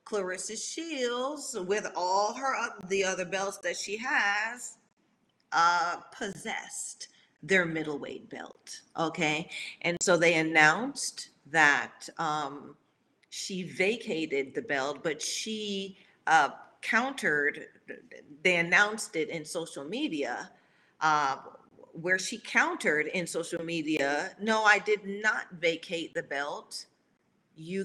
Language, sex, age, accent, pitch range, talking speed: English, female, 40-59, American, 155-205 Hz, 115 wpm